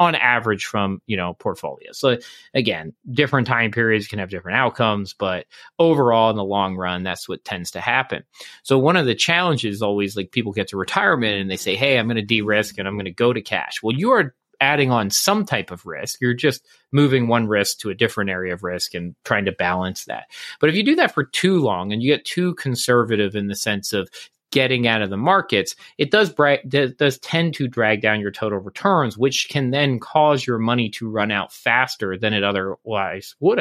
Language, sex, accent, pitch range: English, male, American, 105-145 Hz